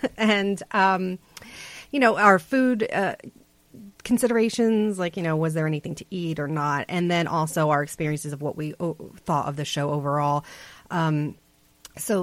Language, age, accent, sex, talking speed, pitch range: English, 30-49, American, female, 160 wpm, 155-200 Hz